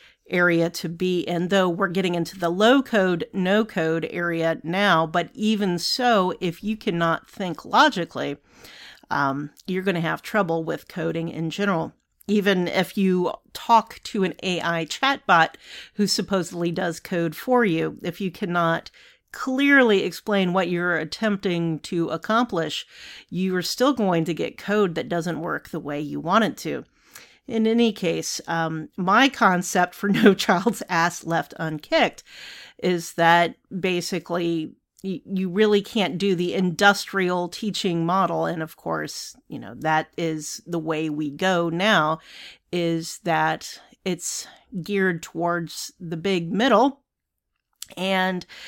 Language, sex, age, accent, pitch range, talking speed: English, female, 40-59, American, 170-200 Hz, 145 wpm